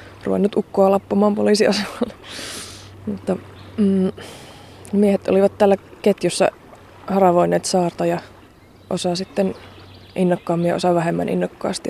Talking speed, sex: 95 wpm, female